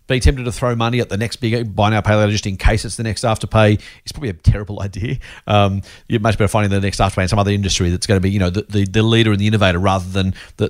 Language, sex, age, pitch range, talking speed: English, male, 40-59, 100-130 Hz, 295 wpm